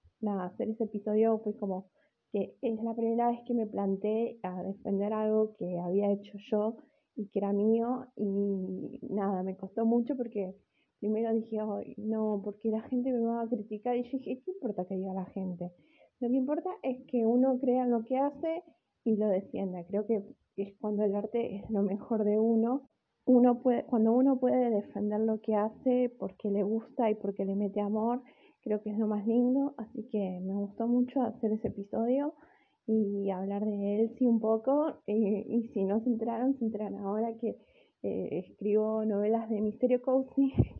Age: 20-39